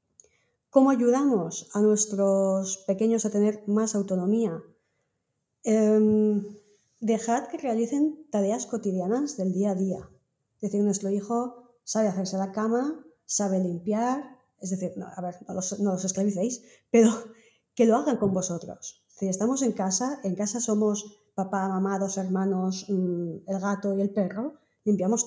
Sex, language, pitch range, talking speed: female, Spanish, 195-235 Hz, 145 wpm